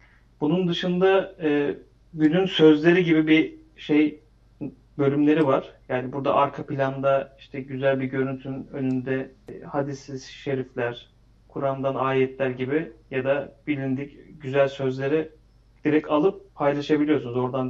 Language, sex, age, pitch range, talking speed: Turkish, male, 40-59, 130-155 Hz, 115 wpm